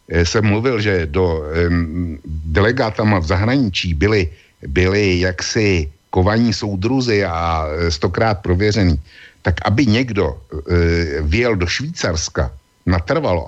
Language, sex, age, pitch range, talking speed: Slovak, male, 60-79, 90-115 Hz, 105 wpm